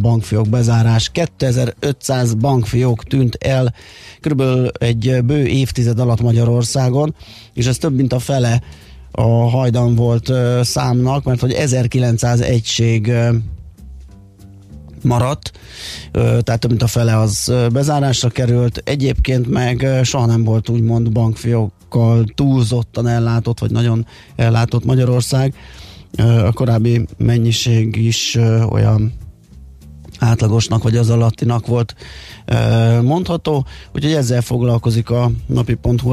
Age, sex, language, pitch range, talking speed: 30-49, male, Hungarian, 115-125 Hz, 110 wpm